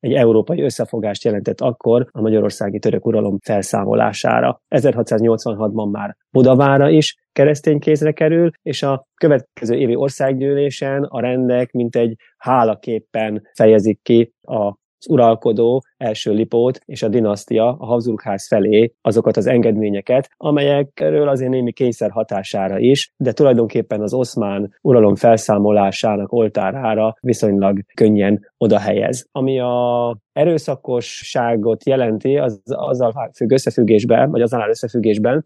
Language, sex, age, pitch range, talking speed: Hungarian, male, 30-49, 110-135 Hz, 120 wpm